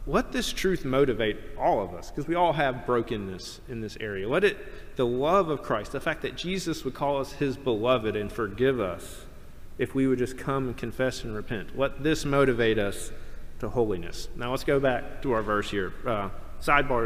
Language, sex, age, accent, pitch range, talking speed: English, male, 40-59, American, 125-165 Hz, 205 wpm